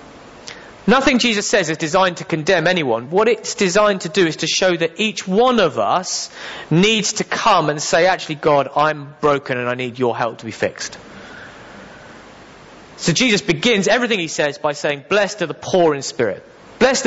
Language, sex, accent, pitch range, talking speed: English, male, British, 150-205 Hz, 185 wpm